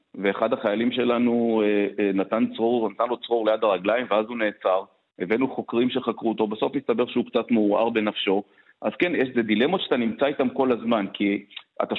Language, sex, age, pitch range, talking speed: Hebrew, male, 40-59, 105-130 Hz, 175 wpm